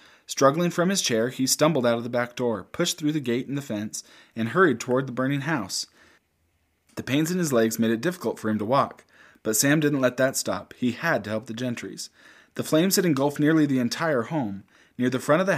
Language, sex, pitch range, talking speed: English, male, 110-150 Hz, 235 wpm